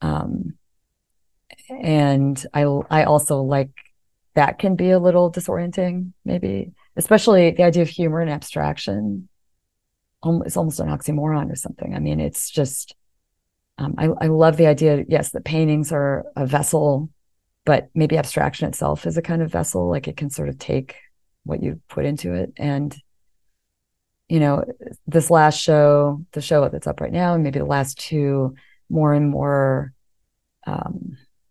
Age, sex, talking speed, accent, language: 30-49, female, 160 wpm, American, English